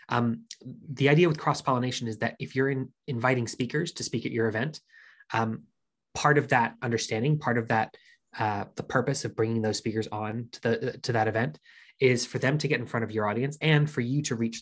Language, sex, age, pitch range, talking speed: English, male, 20-39, 110-130 Hz, 220 wpm